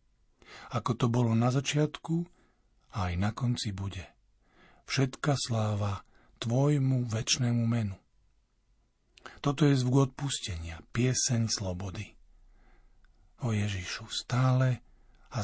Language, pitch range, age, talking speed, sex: Slovak, 110-135 Hz, 50-69, 95 wpm, male